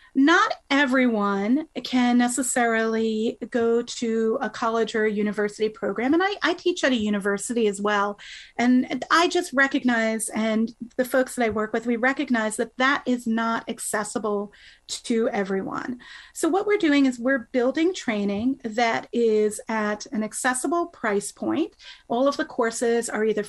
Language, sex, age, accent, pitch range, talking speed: English, female, 30-49, American, 230-285 Hz, 155 wpm